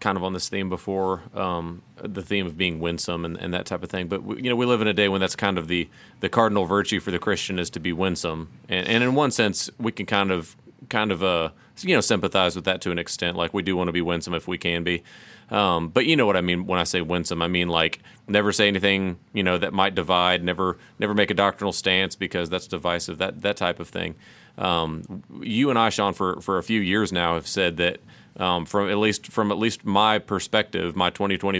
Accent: American